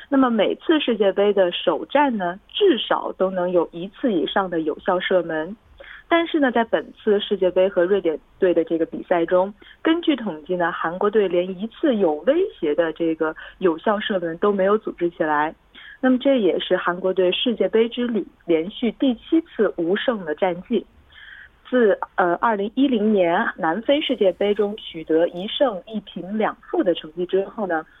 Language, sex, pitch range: Korean, female, 175-235 Hz